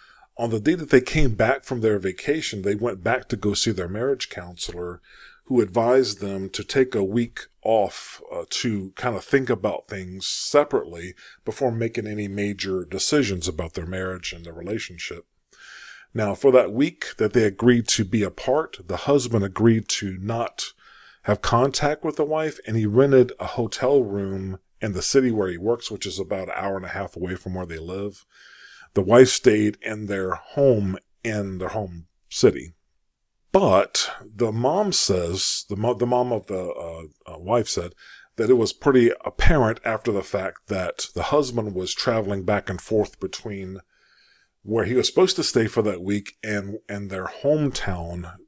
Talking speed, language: 180 wpm, English